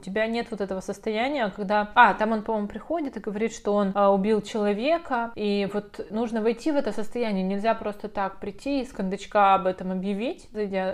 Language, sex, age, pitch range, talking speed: Russian, female, 20-39, 195-225 Hz, 190 wpm